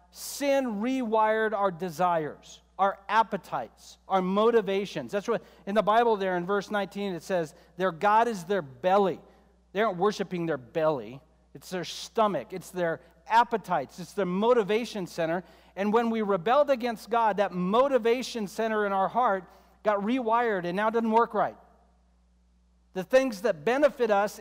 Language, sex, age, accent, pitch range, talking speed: English, male, 50-69, American, 180-230 Hz, 155 wpm